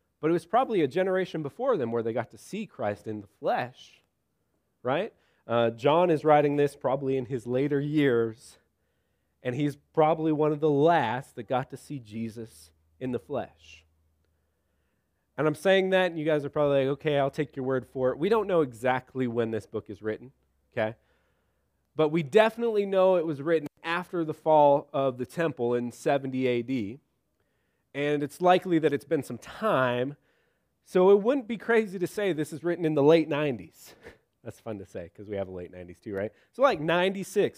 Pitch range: 125-170 Hz